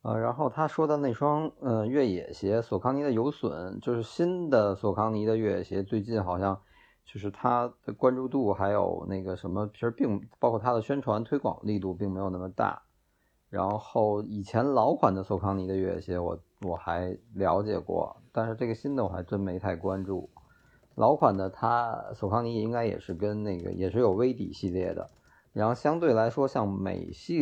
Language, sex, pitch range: Chinese, male, 95-115 Hz